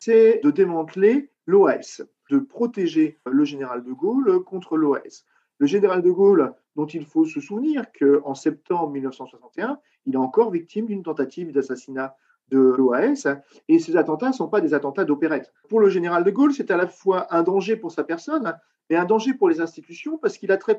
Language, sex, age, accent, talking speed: French, male, 40-59, French, 190 wpm